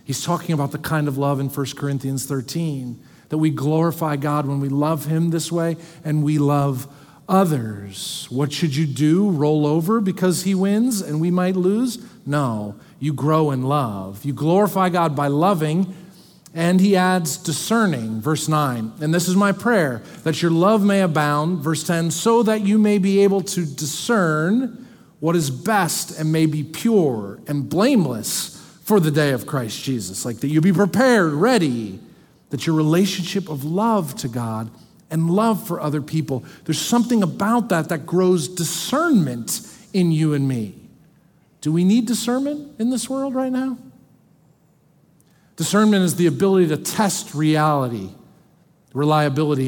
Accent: American